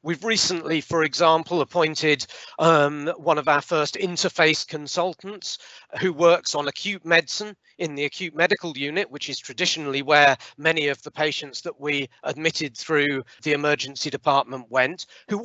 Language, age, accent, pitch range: English, 40-59, British, 145-180 Hz